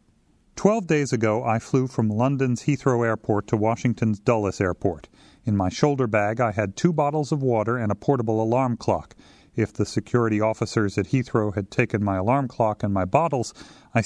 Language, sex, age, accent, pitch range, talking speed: English, male, 40-59, American, 110-130 Hz, 185 wpm